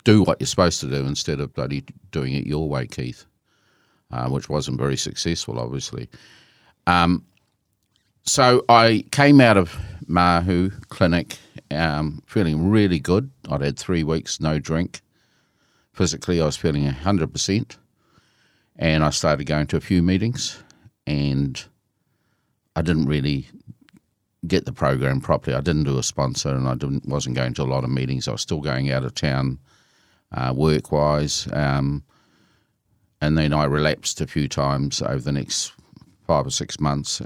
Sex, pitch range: male, 70-90 Hz